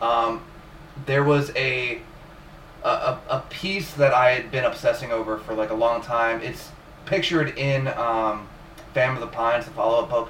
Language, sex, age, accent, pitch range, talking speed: English, male, 20-39, American, 115-150 Hz, 170 wpm